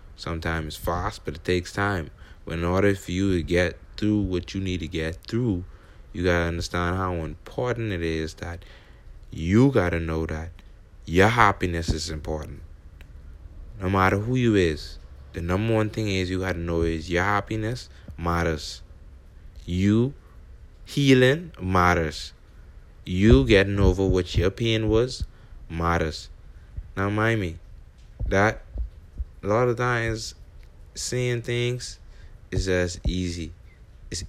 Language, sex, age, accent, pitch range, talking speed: English, male, 20-39, American, 85-110 Hz, 145 wpm